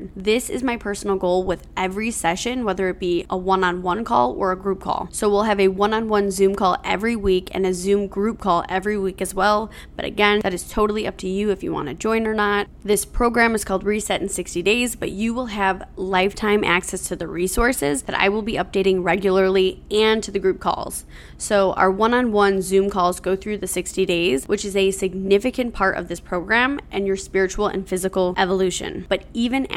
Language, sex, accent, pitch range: English, female, American, 185-215 Hz